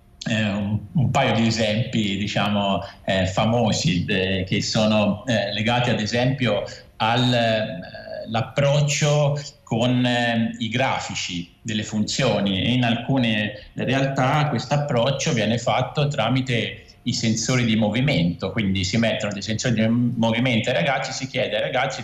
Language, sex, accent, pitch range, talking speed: Italian, male, native, 100-125 Hz, 140 wpm